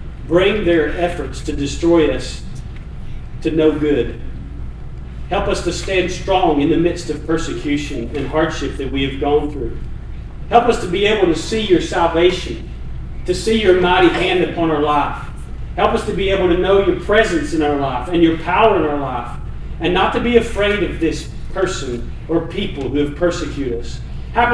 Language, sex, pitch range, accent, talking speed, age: English, male, 150-200 Hz, American, 185 wpm, 40-59